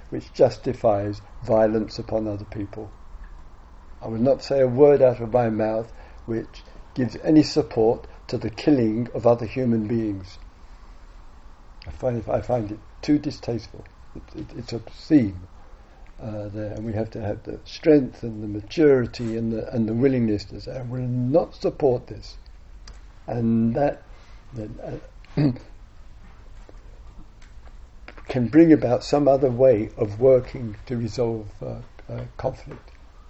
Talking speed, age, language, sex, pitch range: 140 wpm, 60-79, English, male, 100-125 Hz